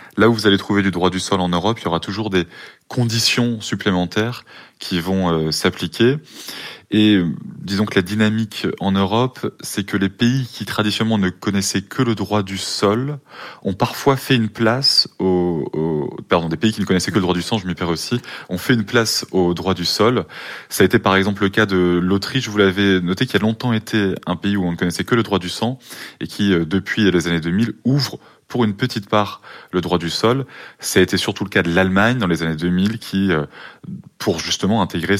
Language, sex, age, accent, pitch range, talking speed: French, male, 20-39, French, 90-110 Hz, 220 wpm